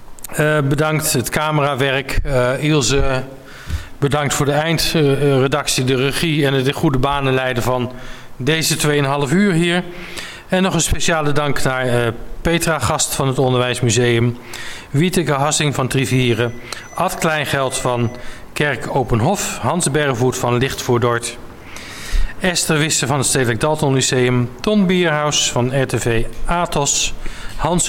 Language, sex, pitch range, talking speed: Dutch, male, 120-150 Hz, 130 wpm